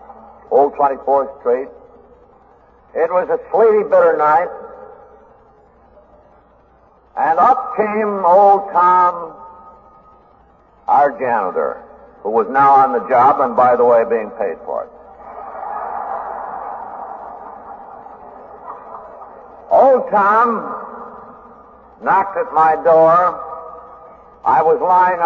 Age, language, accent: 60-79, English, American